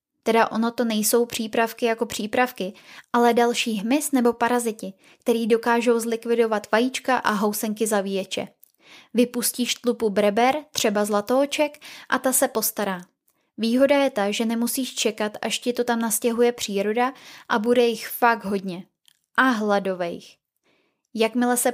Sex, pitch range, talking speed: female, 215-245 Hz, 135 wpm